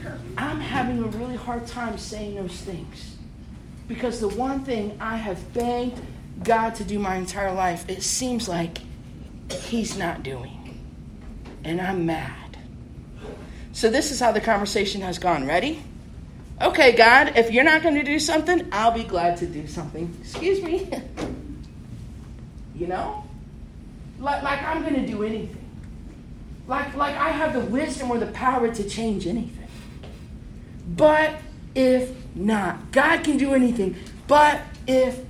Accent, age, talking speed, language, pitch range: American, 40-59, 145 wpm, English, 195-285 Hz